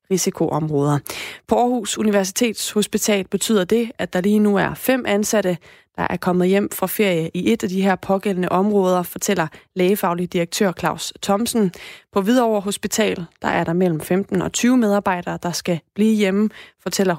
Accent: native